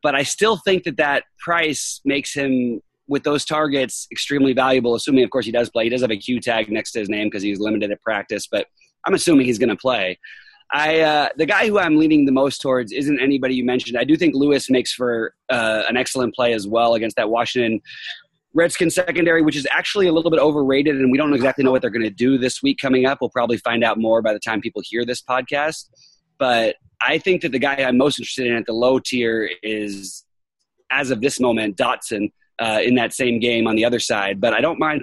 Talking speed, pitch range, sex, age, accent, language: 240 wpm, 120-150 Hz, male, 30-49, American, English